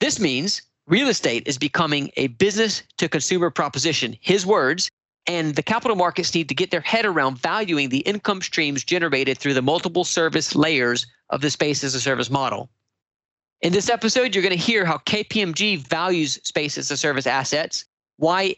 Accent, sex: American, male